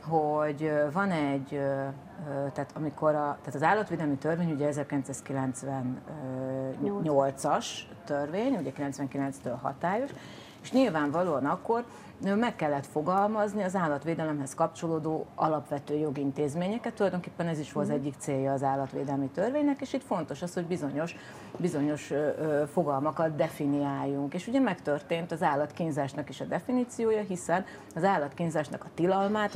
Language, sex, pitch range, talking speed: Hungarian, female, 145-200 Hz, 115 wpm